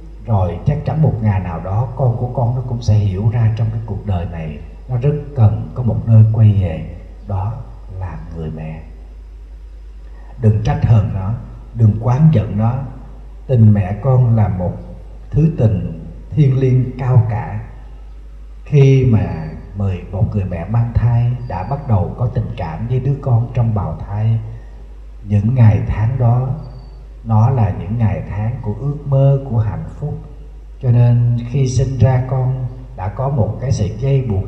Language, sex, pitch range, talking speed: Vietnamese, male, 105-135 Hz, 170 wpm